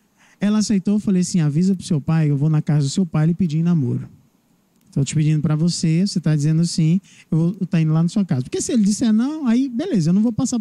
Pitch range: 155-210 Hz